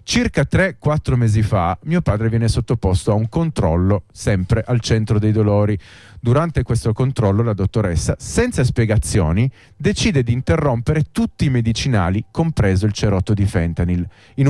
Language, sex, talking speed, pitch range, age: Italian, male, 145 wpm, 100-125 Hz, 40-59